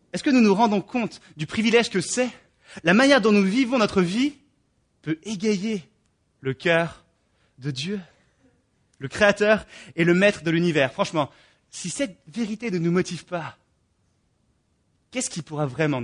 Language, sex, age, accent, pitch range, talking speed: English, male, 30-49, French, 145-205 Hz, 155 wpm